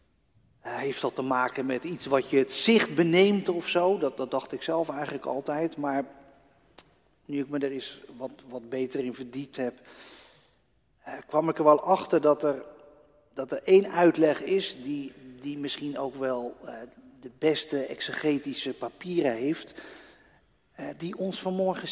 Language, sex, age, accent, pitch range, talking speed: Dutch, male, 40-59, Dutch, 130-185 Hz, 155 wpm